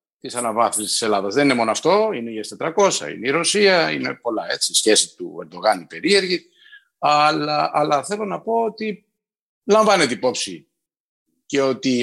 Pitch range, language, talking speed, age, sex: 125-205 Hz, Greek, 155 wpm, 50-69, male